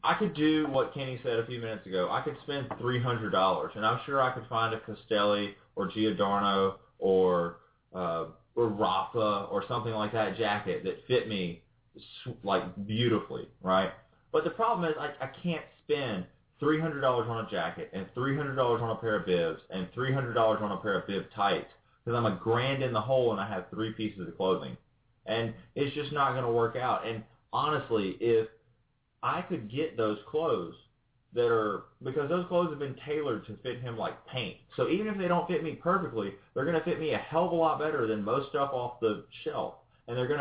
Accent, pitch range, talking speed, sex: American, 110-150 Hz, 205 wpm, male